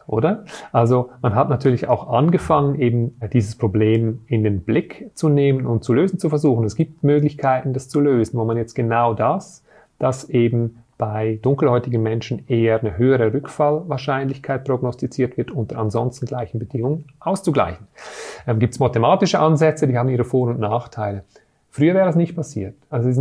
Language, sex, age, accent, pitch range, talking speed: German, male, 40-59, German, 120-150 Hz, 170 wpm